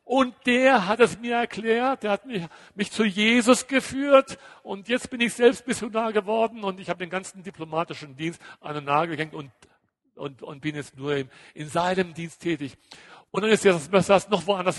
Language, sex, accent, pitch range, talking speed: German, male, German, 140-200 Hz, 195 wpm